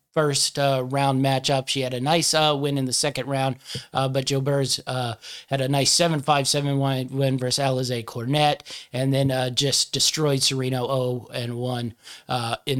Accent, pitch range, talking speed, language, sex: American, 130-145 Hz, 170 wpm, English, male